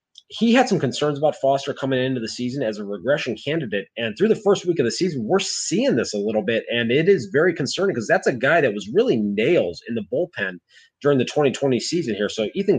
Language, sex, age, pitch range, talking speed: English, male, 30-49, 115-160 Hz, 240 wpm